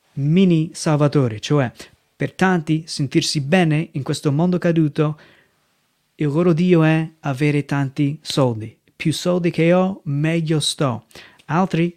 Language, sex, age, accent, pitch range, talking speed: Italian, male, 30-49, native, 145-175 Hz, 125 wpm